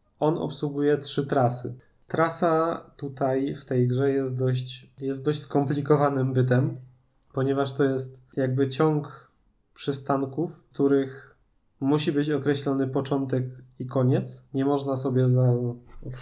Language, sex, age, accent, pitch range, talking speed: Polish, male, 20-39, native, 125-145 Hz, 125 wpm